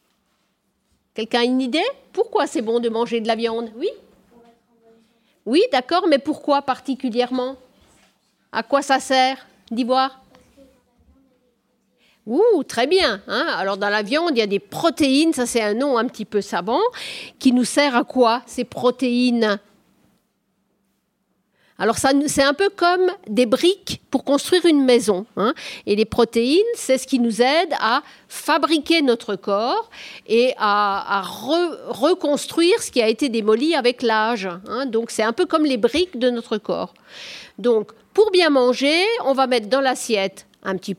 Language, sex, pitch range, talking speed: French, female, 225-285 Hz, 160 wpm